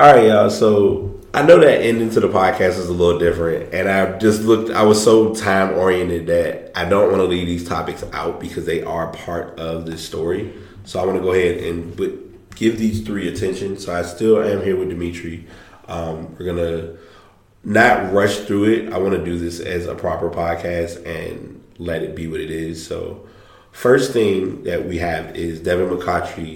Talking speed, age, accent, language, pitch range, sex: 205 wpm, 20-39, American, English, 85-100 Hz, male